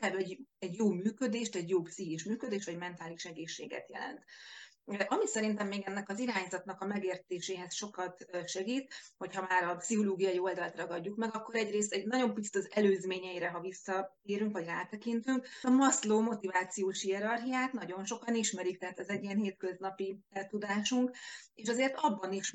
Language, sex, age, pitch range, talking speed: Hungarian, female, 30-49, 180-215 Hz, 155 wpm